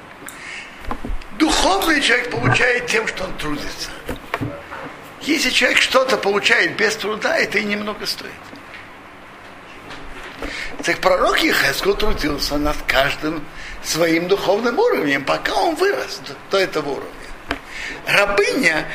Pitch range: 160-225 Hz